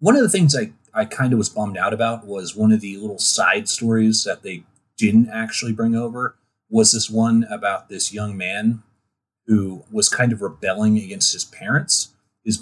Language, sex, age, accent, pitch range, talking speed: English, male, 30-49, American, 105-120 Hz, 190 wpm